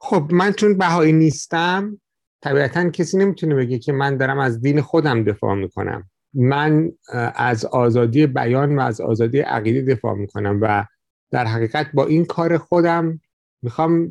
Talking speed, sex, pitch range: 150 wpm, male, 130-165 Hz